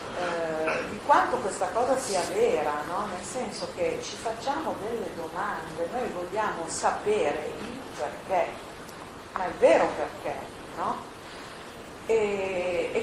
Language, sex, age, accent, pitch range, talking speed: Italian, female, 40-59, native, 170-260 Hz, 115 wpm